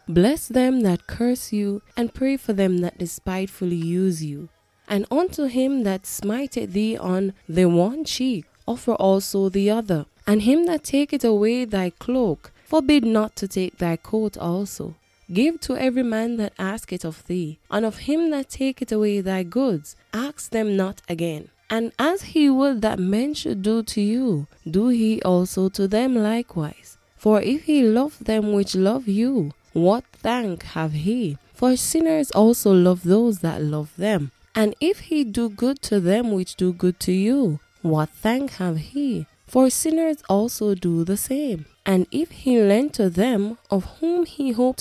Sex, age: female, 10-29